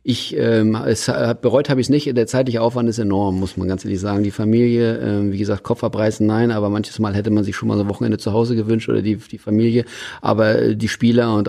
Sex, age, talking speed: male, 40-59, 255 wpm